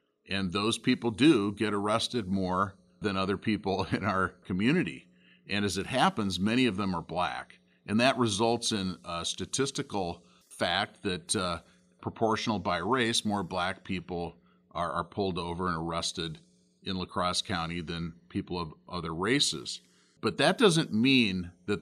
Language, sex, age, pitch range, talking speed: English, male, 40-59, 90-110 Hz, 155 wpm